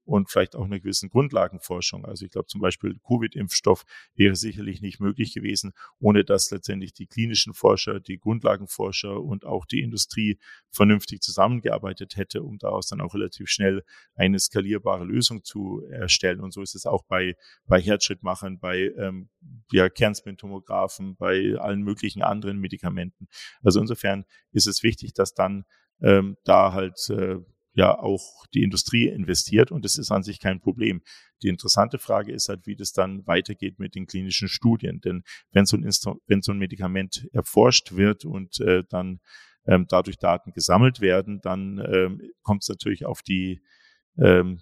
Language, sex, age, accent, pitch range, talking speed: German, male, 40-59, German, 95-105 Hz, 165 wpm